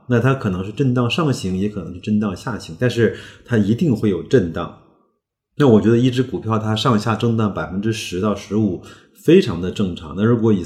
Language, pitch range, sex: Chinese, 100-125 Hz, male